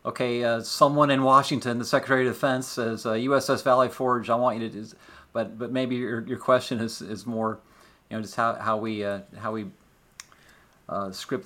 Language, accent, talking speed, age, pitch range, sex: English, American, 210 wpm, 40-59, 115-125 Hz, male